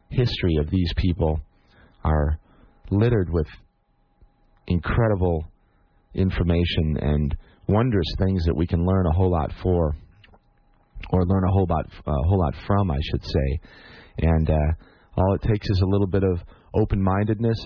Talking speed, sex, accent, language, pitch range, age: 150 wpm, male, American, English, 80-100 Hz, 30-49